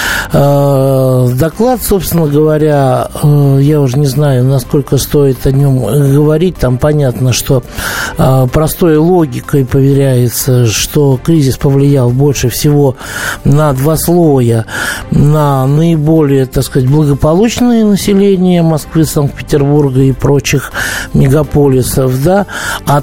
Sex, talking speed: male, 95 wpm